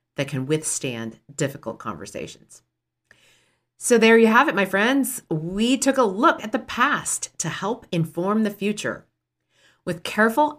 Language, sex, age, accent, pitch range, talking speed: English, female, 40-59, American, 155-225 Hz, 145 wpm